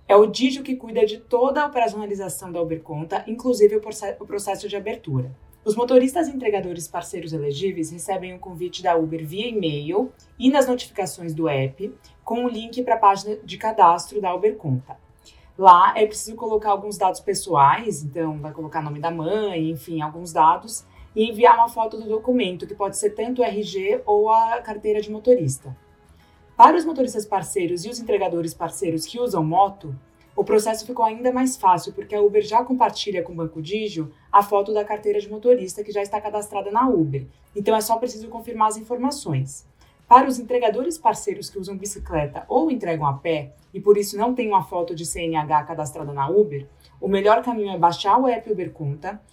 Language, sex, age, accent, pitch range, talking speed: Portuguese, female, 20-39, Brazilian, 170-230 Hz, 190 wpm